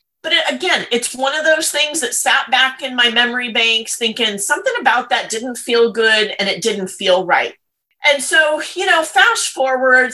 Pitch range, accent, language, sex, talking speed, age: 195-250 Hz, American, English, female, 190 wpm, 30-49